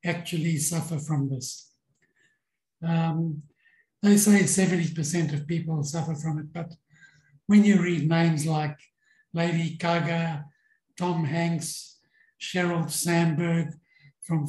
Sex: male